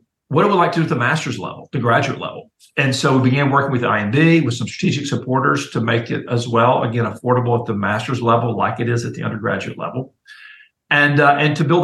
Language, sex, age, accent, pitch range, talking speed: English, male, 50-69, American, 120-145 Hz, 240 wpm